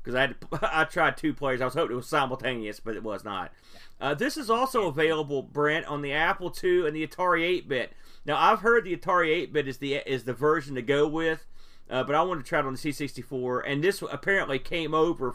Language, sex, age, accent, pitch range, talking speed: English, male, 40-59, American, 140-190 Hz, 230 wpm